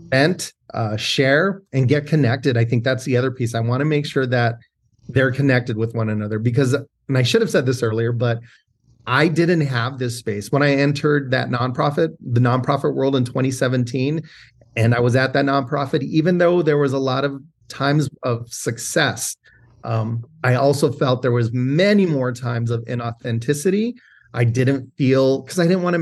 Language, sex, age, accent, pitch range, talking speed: English, male, 30-49, American, 120-145 Hz, 190 wpm